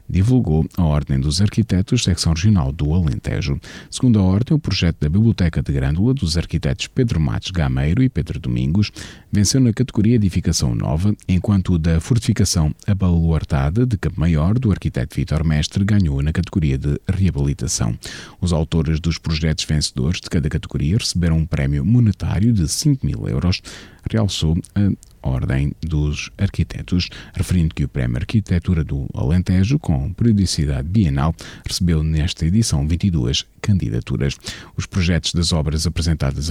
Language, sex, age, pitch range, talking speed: Portuguese, male, 40-59, 75-105 Hz, 145 wpm